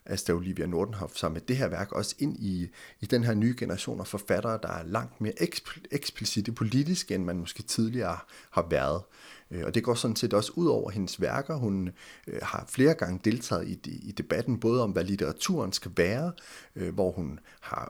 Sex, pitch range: male, 95-125 Hz